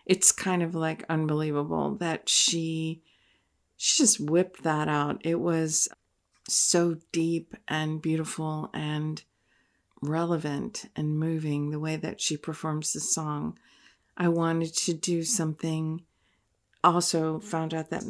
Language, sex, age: English, female, 40-59